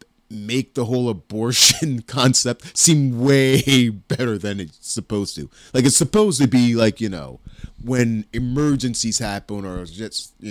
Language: English